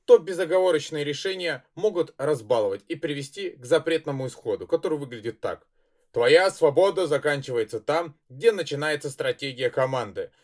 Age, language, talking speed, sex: 20-39, Russian, 120 wpm, male